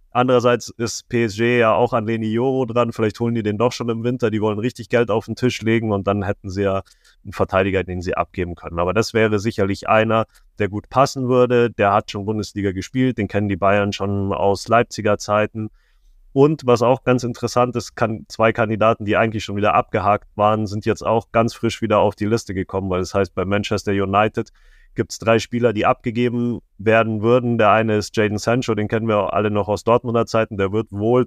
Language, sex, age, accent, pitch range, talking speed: German, male, 30-49, German, 100-120 Hz, 215 wpm